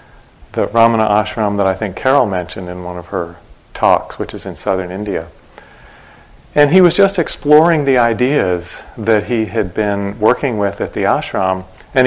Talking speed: 175 wpm